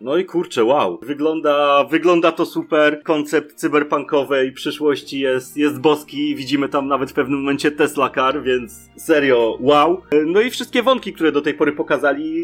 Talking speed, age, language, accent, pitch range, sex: 165 wpm, 30-49, Polish, native, 140-170 Hz, male